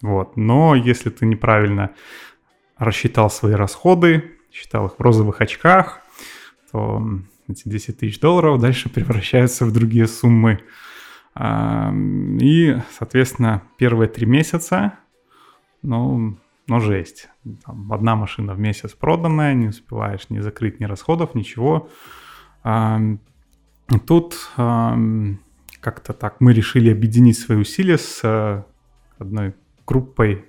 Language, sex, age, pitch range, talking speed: Russian, male, 20-39, 110-130 Hz, 105 wpm